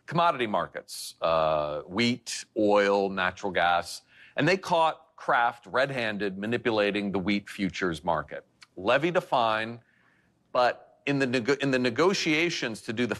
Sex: male